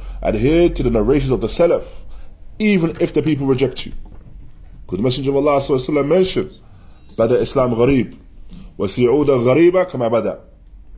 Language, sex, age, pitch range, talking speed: English, male, 20-39, 95-140 Hz, 155 wpm